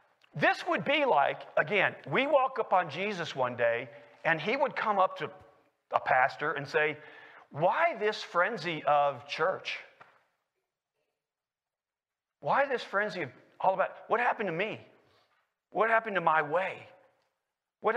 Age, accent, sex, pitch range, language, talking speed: 40-59, American, male, 170-280 Hz, English, 145 wpm